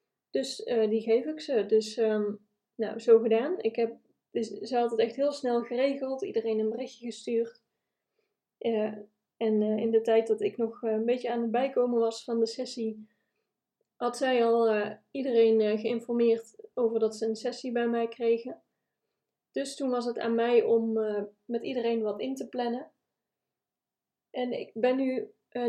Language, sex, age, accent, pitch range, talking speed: Dutch, female, 20-39, Dutch, 225-250 Hz, 175 wpm